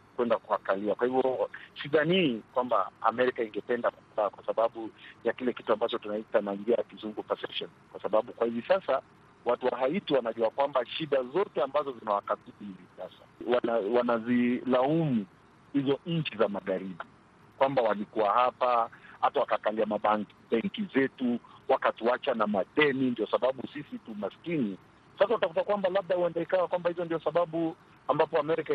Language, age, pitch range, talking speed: Swahili, 50-69, 125-165 Hz, 130 wpm